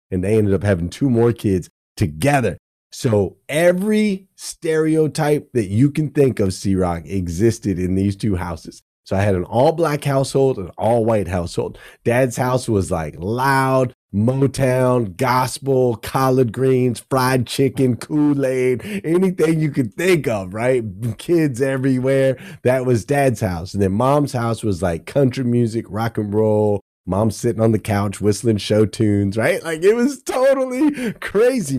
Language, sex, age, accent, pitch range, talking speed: English, male, 30-49, American, 100-145 Hz, 155 wpm